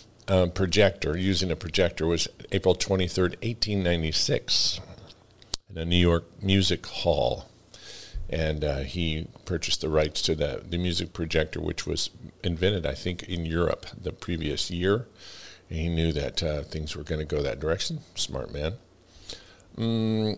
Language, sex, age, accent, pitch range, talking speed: English, male, 50-69, American, 80-95 Hz, 150 wpm